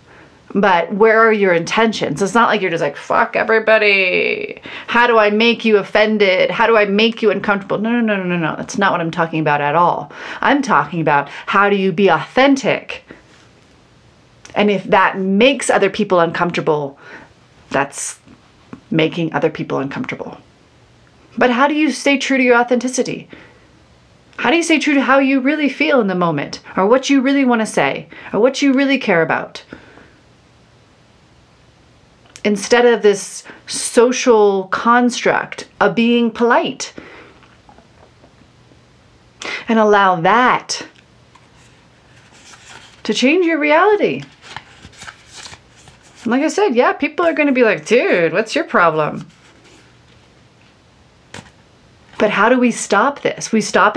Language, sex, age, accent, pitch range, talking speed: English, female, 30-49, American, 195-265 Hz, 145 wpm